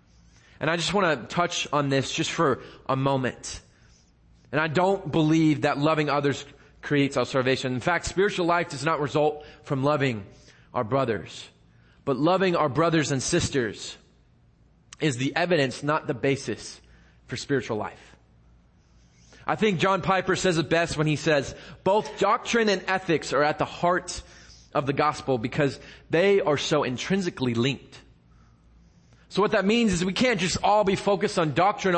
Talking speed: 165 wpm